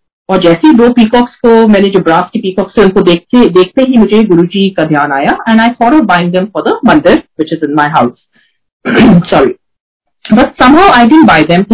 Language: Hindi